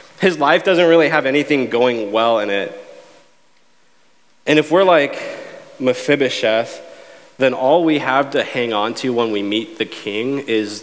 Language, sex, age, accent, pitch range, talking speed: English, male, 20-39, American, 110-140 Hz, 160 wpm